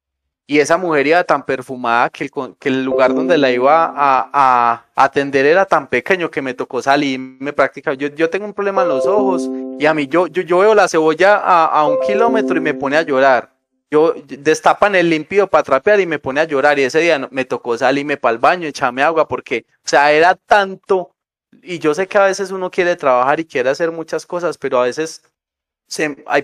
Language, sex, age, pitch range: Spanish, male, 20-39, 130-165 Hz